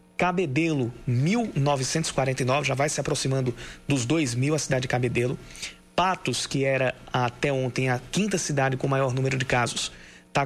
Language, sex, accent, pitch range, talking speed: Portuguese, male, Brazilian, 130-160 Hz, 150 wpm